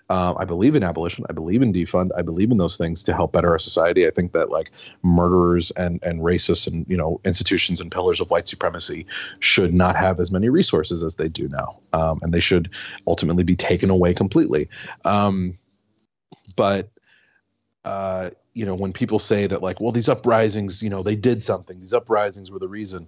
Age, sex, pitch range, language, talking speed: 30-49, male, 85-105 Hz, English, 205 wpm